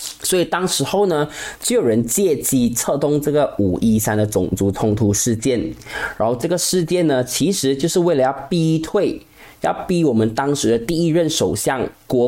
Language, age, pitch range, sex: Chinese, 20-39, 115-165 Hz, male